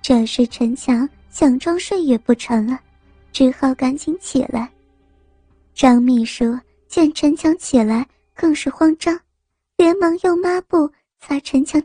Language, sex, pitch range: Chinese, male, 245-310 Hz